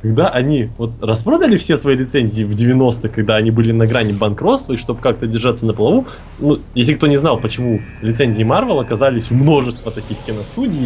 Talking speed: 190 wpm